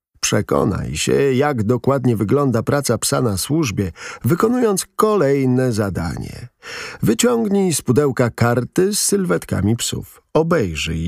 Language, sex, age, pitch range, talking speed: Polish, male, 50-69, 110-155 Hz, 110 wpm